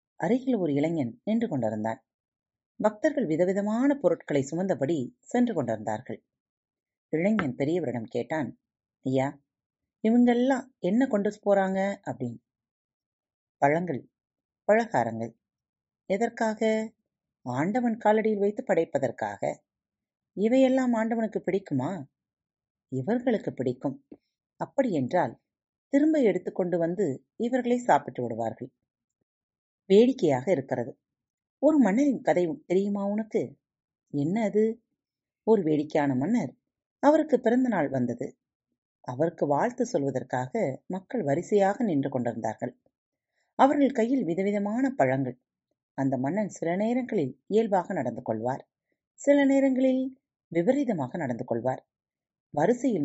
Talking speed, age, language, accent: 90 wpm, 30-49, Tamil, native